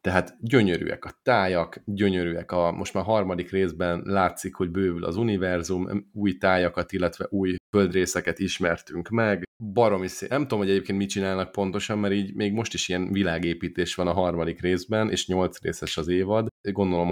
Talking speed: 170 wpm